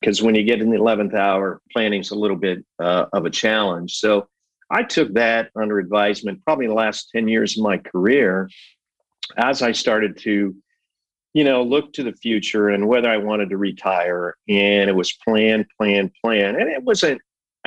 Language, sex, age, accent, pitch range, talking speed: English, male, 50-69, American, 100-115 Hz, 185 wpm